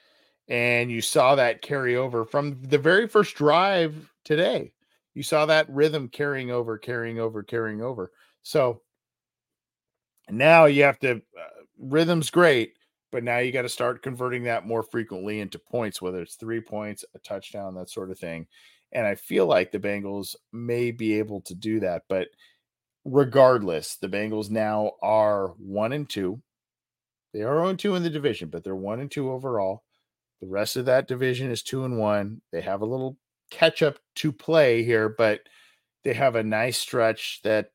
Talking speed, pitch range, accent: 175 wpm, 110-135 Hz, American